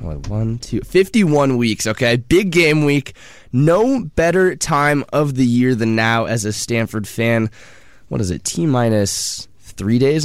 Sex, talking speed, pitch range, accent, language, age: male, 160 wpm, 110-160 Hz, American, English, 20-39